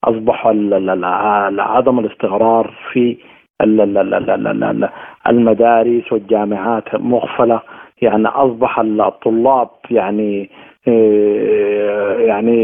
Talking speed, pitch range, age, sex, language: 55 wpm, 115-135 Hz, 50-69, male, Arabic